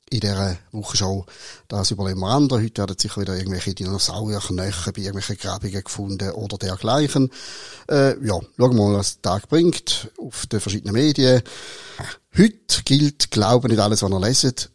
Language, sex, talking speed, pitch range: German, male, 165 wpm, 100-120 Hz